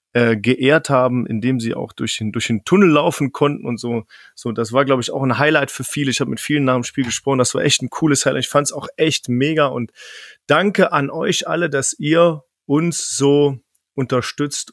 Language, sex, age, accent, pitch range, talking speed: German, male, 30-49, German, 125-165 Hz, 225 wpm